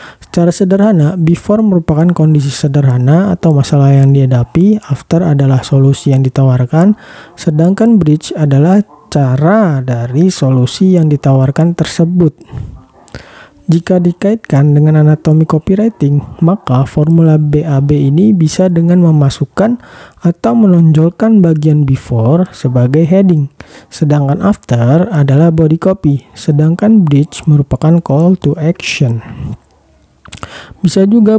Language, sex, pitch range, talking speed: Indonesian, male, 135-170 Hz, 105 wpm